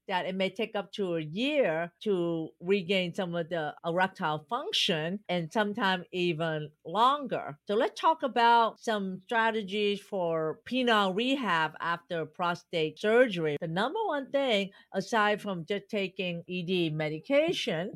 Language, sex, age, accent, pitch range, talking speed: English, female, 50-69, American, 175-230 Hz, 135 wpm